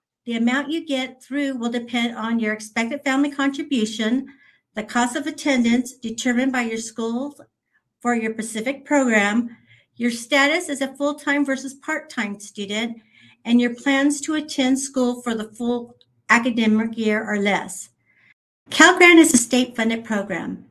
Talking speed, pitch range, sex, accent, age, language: 150 wpm, 215-270 Hz, female, American, 50-69, English